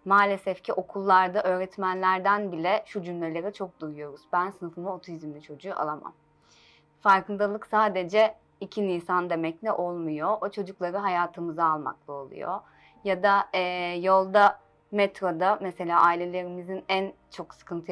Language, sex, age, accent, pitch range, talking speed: Turkish, female, 30-49, native, 170-205 Hz, 120 wpm